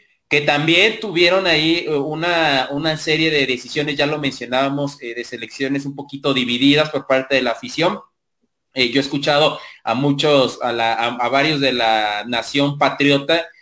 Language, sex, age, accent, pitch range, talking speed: Spanish, male, 30-49, Mexican, 135-180 Hz, 165 wpm